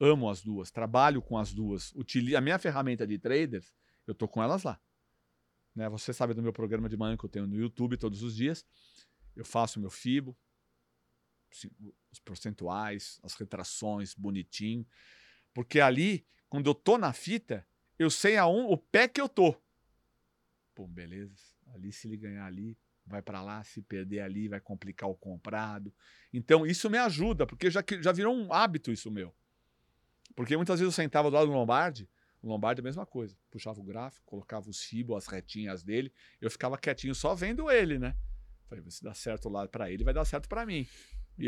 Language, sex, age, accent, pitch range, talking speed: Portuguese, male, 40-59, Brazilian, 100-140 Hz, 190 wpm